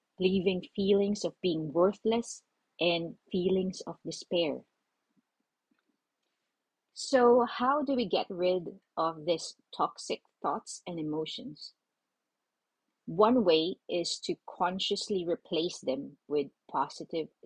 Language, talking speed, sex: English, 105 wpm, female